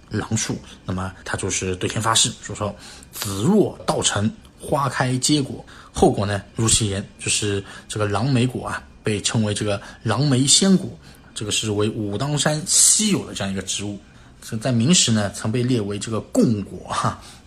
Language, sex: Chinese, male